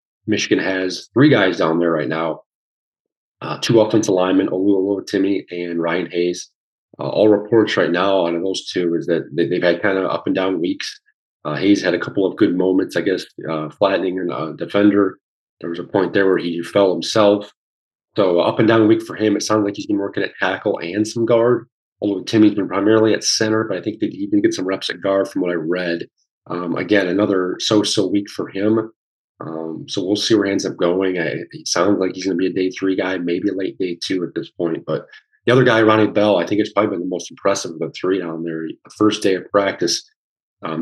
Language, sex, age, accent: English, male, 40-59, American